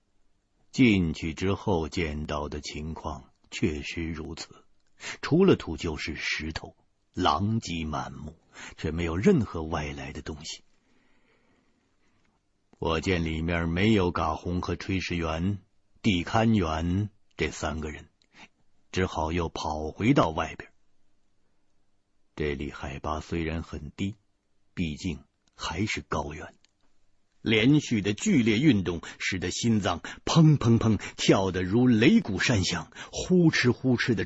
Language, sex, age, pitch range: Chinese, male, 60-79, 80-100 Hz